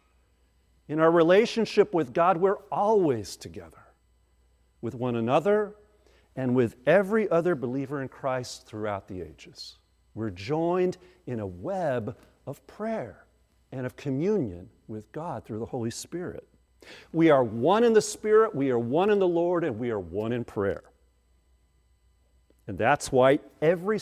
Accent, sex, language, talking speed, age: American, male, English, 145 wpm, 50-69